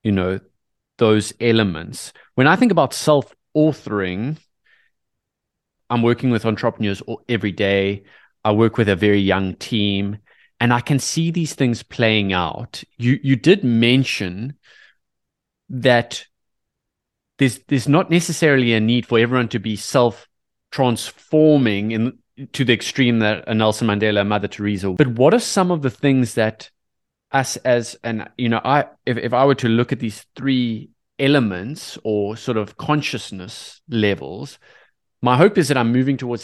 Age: 20-39